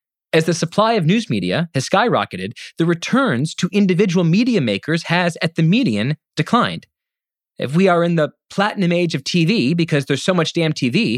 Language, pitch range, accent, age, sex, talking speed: English, 150-205 Hz, American, 30-49, male, 185 wpm